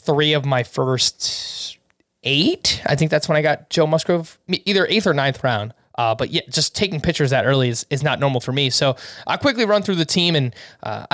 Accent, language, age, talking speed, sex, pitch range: American, English, 20-39, 220 wpm, male, 135-175 Hz